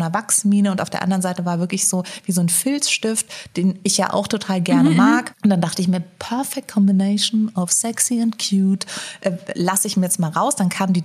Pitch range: 185-225 Hz